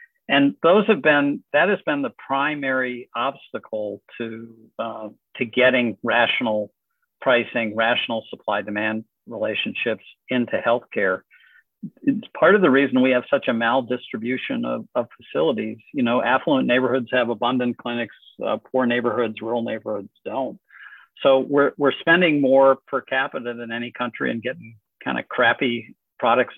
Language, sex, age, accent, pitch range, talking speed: English, male, 50-69, American, 115-135 Hz, 145 wpm